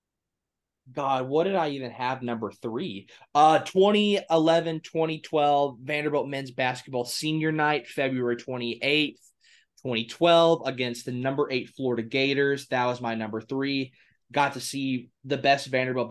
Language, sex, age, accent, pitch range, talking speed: English, male, 20-39, American, 115-140 Hz, 135 wpm